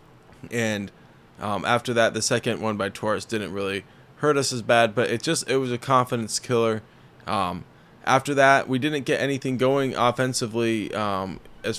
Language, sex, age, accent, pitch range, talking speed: English, male, 20-39, American, 105-130 Hz, 175 wpm